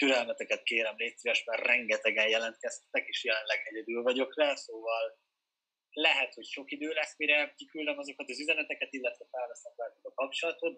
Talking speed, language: 150 wpm, Hungarian